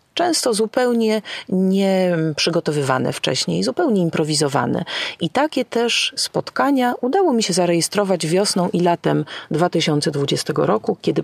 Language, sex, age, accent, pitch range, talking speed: Polish, female, 40-59, native, 155-230 Hz, 105 wpm